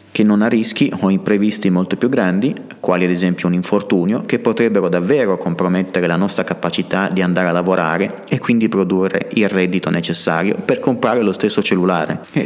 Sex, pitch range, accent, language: male, 90-105 Hz, native, Italian